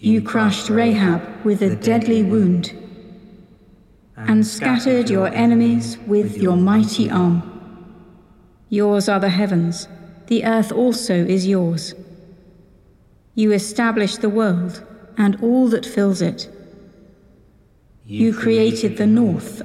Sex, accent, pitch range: female, British, 185-225 Hz